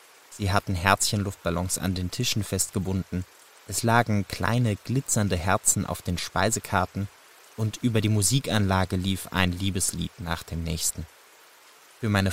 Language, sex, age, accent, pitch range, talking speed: German, male, 20-39, German, 95-110 Hz, 130 wpm